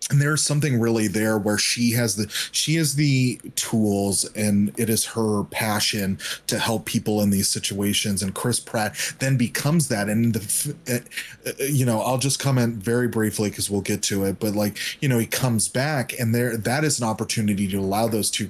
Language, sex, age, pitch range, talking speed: English, male, 30-49, 105-125 Hz, 200 wpm